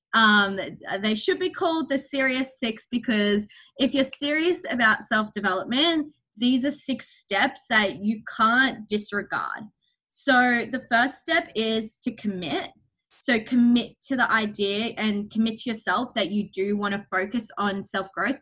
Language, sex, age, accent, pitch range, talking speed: English, female, 20-39, Australian, 205-250 Hz, 150 wpm